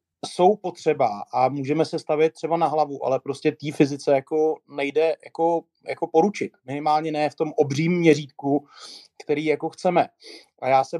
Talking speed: 165 wpm